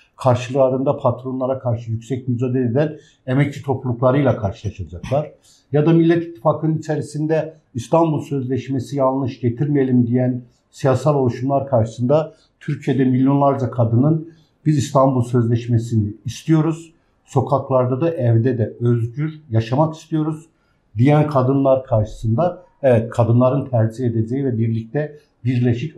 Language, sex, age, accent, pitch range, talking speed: Turkish, male, 60-79, native, 115-150 Hz, 105 wpm